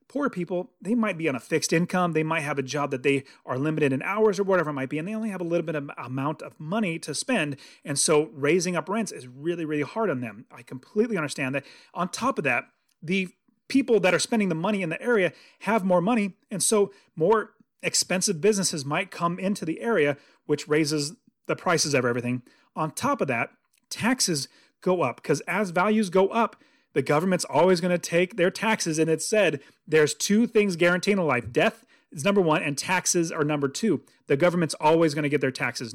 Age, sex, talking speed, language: 30-49, male, 220 wpm, English